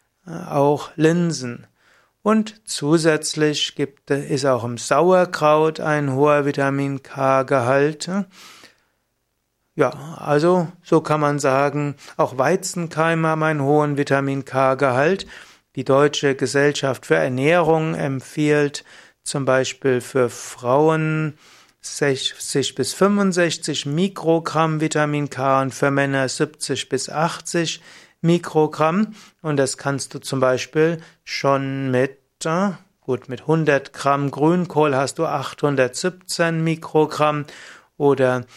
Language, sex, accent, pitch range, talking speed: German, male, German, 135-160 Hz, 100 wpm